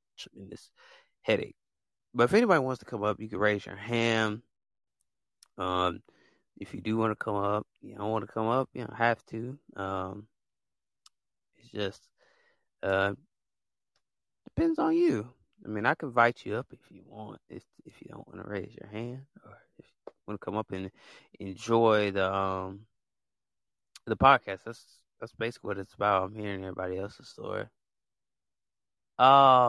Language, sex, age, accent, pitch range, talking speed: English, male, 20-39, American, 100-130 Hz, 170 wpm